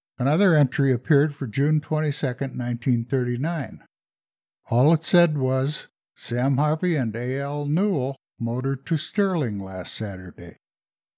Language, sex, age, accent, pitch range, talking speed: English, male, 60-79, American, 120-155 Hz, 115 wpm